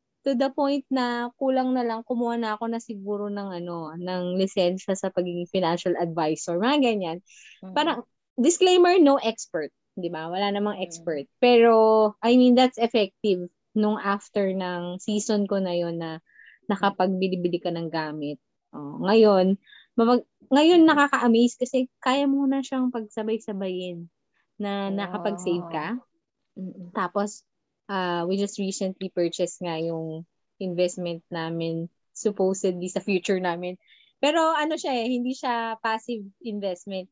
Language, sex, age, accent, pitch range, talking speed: Filipino, female, 20-39, native, 180-230 Hz, 135 wpm